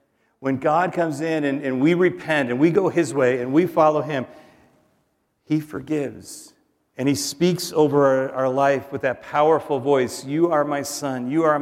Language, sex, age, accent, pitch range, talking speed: English, male, 40-59, American, 120-145 Hz, 185 wpm